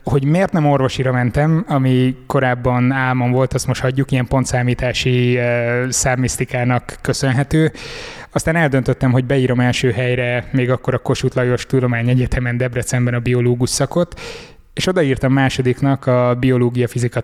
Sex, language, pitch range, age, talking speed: male, Hungarian, 125-140 Hz, 20-39, 130 wpm